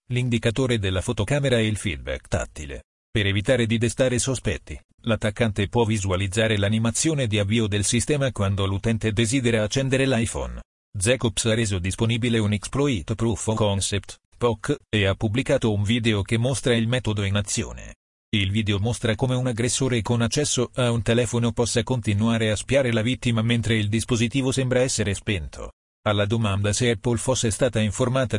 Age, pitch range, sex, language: 40-59, 105-120 Hz, male, Italian